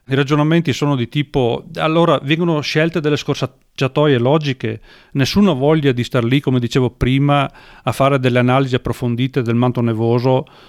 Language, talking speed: Italian, 150 wpm